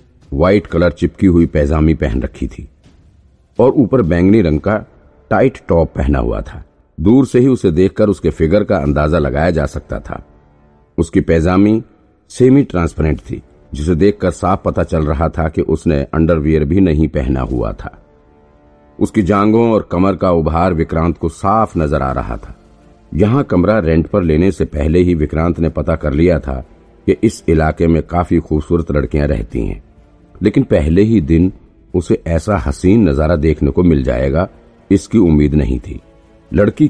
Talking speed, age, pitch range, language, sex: 170 wpm, 50-69, 75-95 Hz, Hindi, male